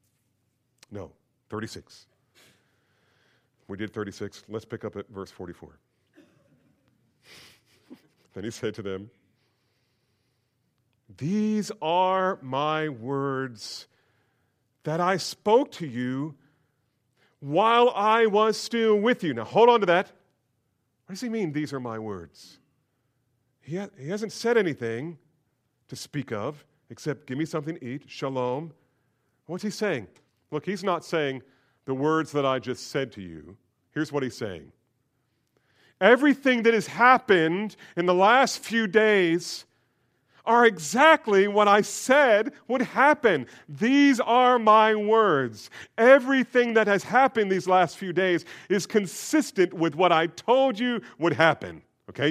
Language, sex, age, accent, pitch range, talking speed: English, male, 40-59, American, 125-205 Hz, 135 wpm